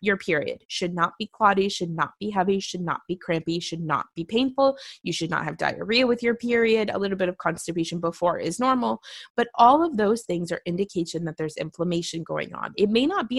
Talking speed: 225 wpm